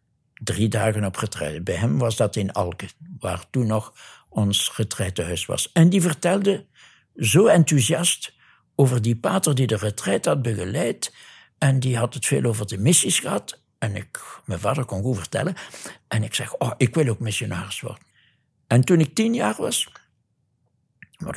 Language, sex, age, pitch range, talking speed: Dutch, male, 60-79, 105-140 Hz, 170 wpm